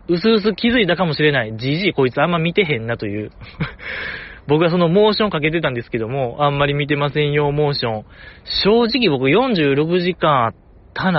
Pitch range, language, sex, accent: 120-195 Hz, Japanese, male, native